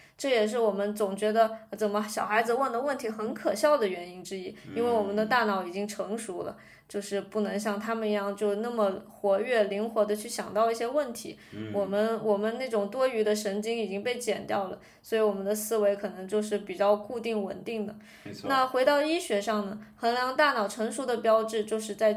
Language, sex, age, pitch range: Chinese, female, 20-39, 210-260 Hz